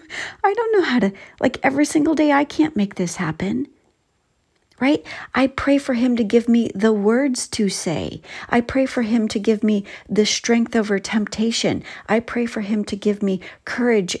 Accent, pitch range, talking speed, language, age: American, 190-240 Hz, 190 wpm, English, 50-69